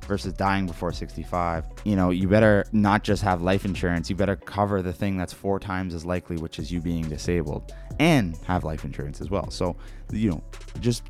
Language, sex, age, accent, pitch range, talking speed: English, male, 20-39, American, 90-110 Hz, 205 wpm